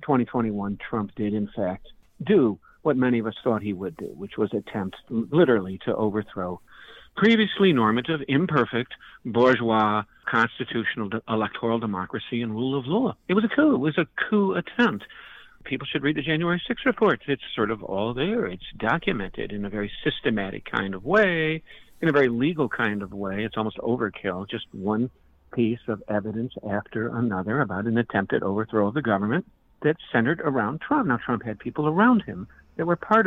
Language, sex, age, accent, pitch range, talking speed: English, male, 50-69, American, 105-155 Hz, 175 wpm